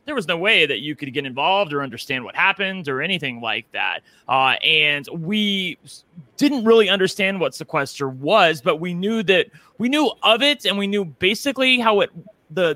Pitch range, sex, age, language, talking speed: 140-190 Hz, male, 30-49, English, 195 wpm